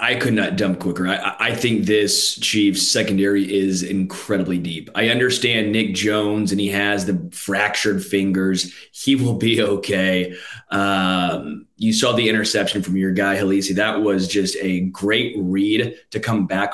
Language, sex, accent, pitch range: English, male, American, 95-115 Hz